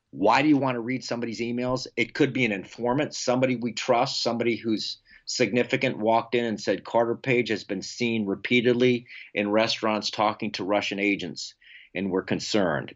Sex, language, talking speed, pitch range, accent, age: male, English, 175 wpm, 105-125 Hz, American, 50-69